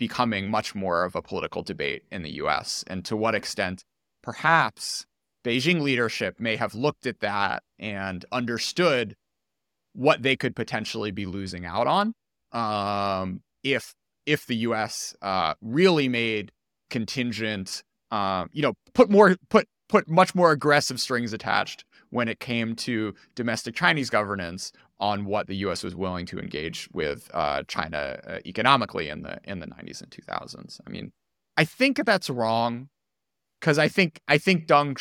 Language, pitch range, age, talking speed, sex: English, 105-145 Hz, 30-49, 160 wpm, male